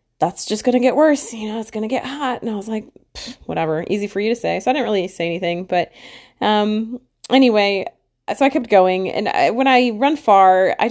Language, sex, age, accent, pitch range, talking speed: English, female, 30-49, American, 175-230 Hz, 230 wpm